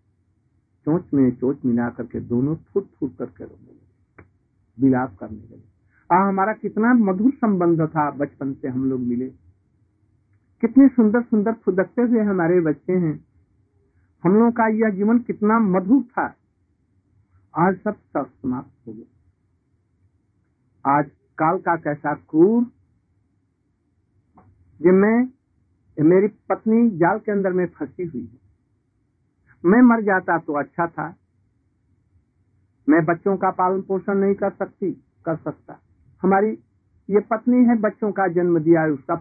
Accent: native